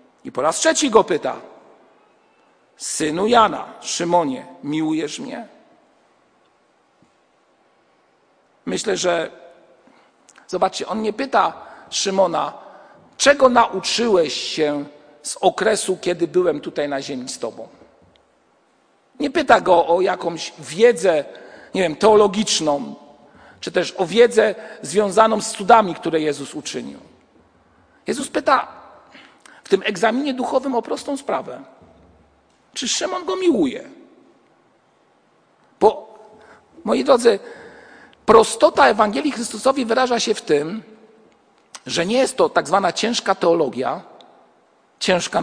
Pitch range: 185-255 Hz